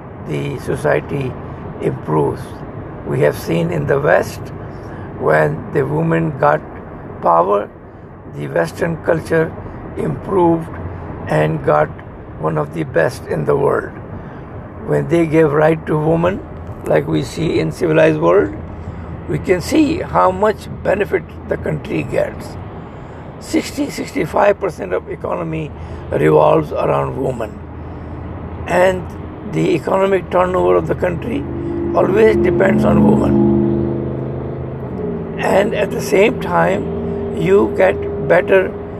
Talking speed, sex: 110 wpm, male